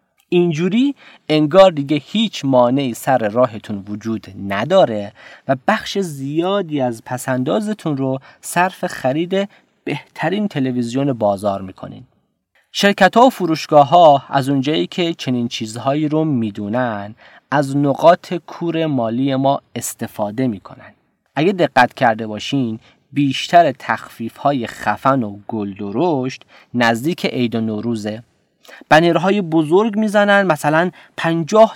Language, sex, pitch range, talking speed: Persian, male, 120-175 Hz, 115 wpm